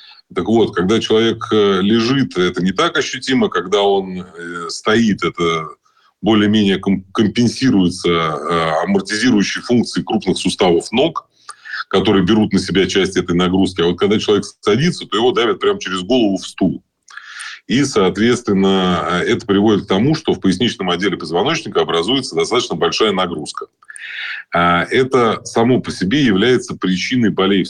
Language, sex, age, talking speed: Russian, male, 30-49, 135 wpm